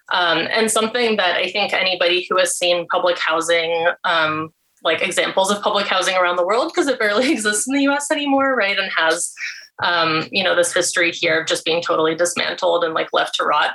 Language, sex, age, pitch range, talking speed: English, female, 20-39, 175-235 Hz, 210 wpm